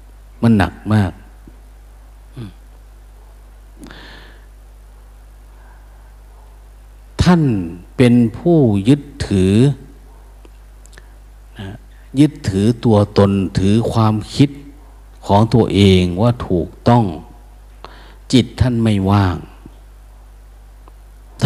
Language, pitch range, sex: Thai, 100-135 Hz, male